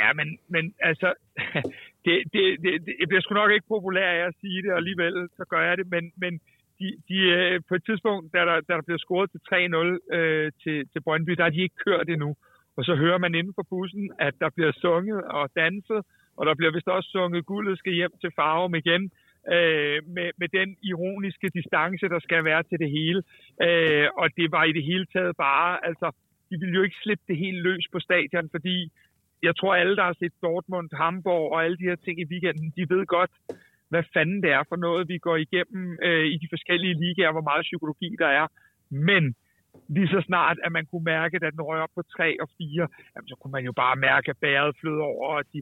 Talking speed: 225 wpm